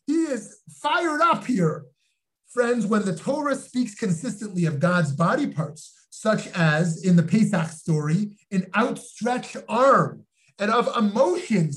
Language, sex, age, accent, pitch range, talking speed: English, male, 30-49, American, 160-240 Hz, 140 wpm